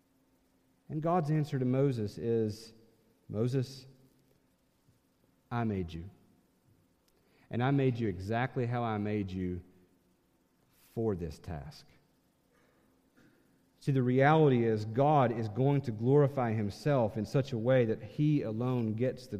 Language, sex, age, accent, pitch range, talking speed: English, male, 40-59, American, 110-150 Hz, 125 wpm